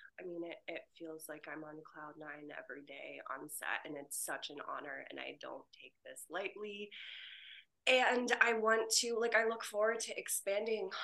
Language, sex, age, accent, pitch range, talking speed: English, female, 20-39, American, 160-205 Hz, 190 wpm